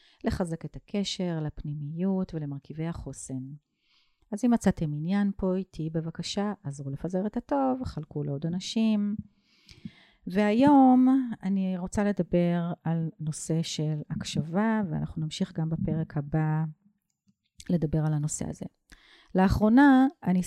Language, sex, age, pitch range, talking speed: Hebrew, female, 40-59, 155-205 Hz, 115 wpm